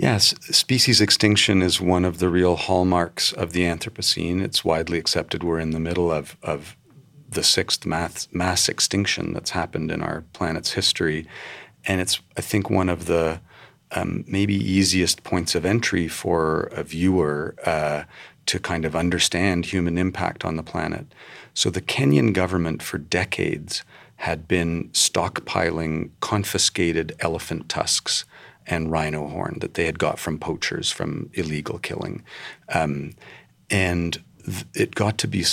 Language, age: English, 40-59